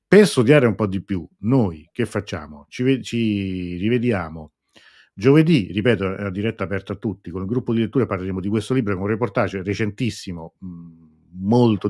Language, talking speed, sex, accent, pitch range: Italian, 175 wpm, male, native, 95-115 Hz